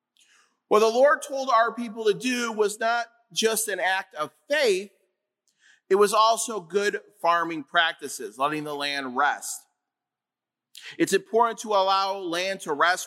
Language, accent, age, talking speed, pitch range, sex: English, American, 30-49, 145 wpm, 175-245 Hz, male